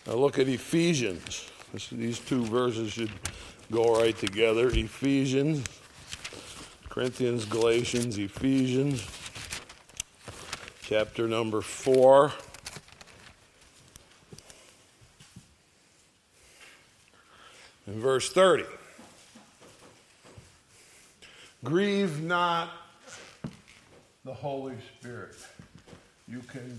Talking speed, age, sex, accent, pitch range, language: 65 wpm, 50-69, male, American, 120-170 Hz, English